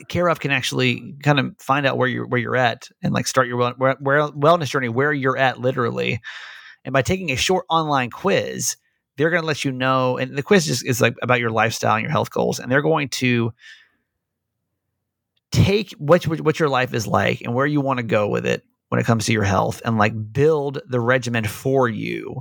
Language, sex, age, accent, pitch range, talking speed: English, male, 30-49, American, 115-150 Hz, 220 wpm